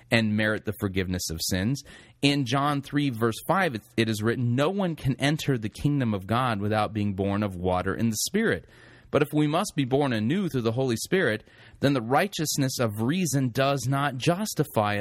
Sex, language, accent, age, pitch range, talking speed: male, English, American, 30-49, 110-140 Hz, 195 wpm